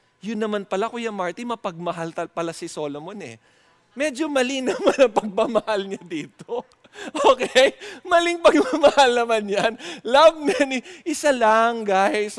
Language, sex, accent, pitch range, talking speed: English, male, Filipino, 205-255 Hz, 125 wpm